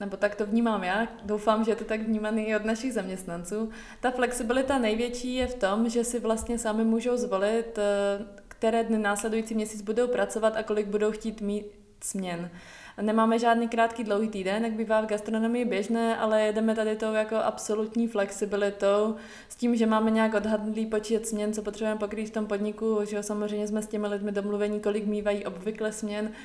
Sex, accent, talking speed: female, native, 185 wpm